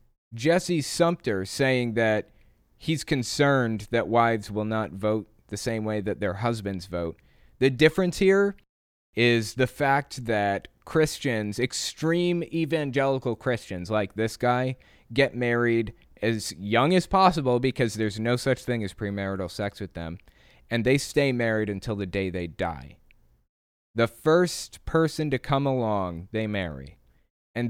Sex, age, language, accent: male, 20-39, English, American